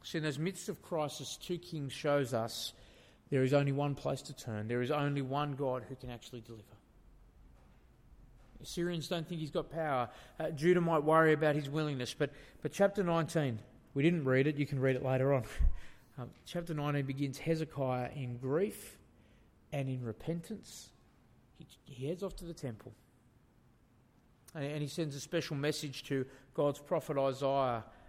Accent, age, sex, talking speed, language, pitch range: Australian, 30-49, male, 175 wpm, English, 125-150 Hz